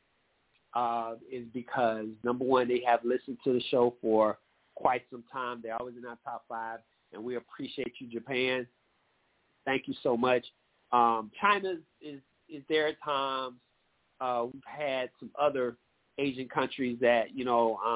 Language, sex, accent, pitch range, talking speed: English, male, American, 115-150 Hz, 160 wpm